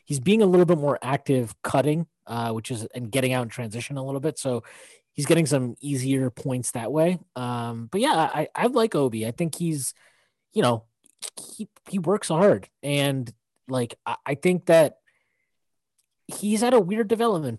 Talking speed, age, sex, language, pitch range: 180 wpm, 20-39, male, English, 115-155 Hz